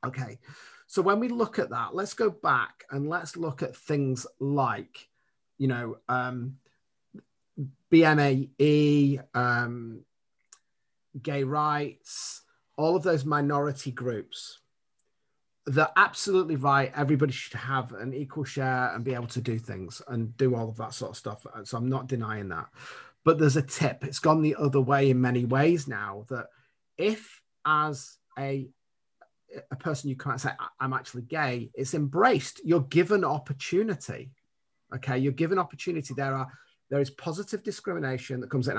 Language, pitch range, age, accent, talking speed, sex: English, 125-150 Hz, 30-49, British, 155 wpm, male